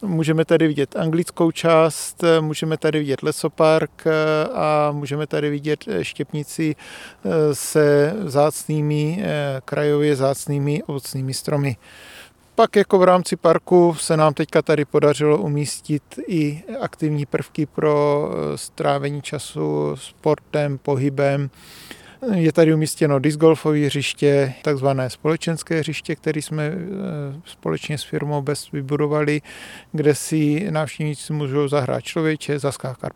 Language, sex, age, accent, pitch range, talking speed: Czech, male, 40-59, native, 145-160 Hz, 110 wpm